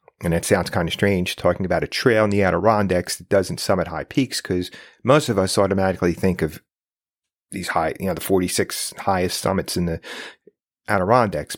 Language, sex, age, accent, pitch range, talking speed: English, male, 30-49, American, 95-110 Hz, 190 wpm